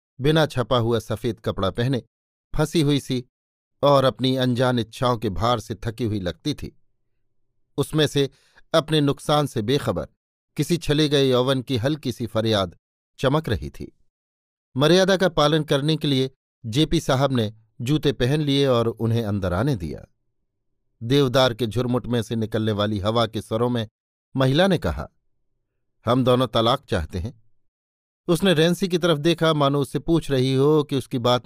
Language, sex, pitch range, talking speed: Hindi, male, 115-140 Hz, 160 wpm